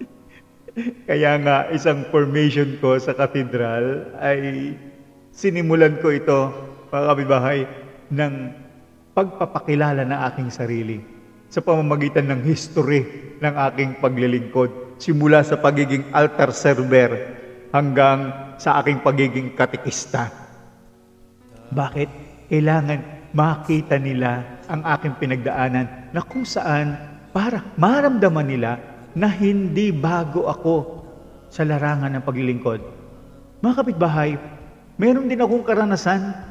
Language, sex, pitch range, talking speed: Filipino, male, 130-165 Hz, 100 wpm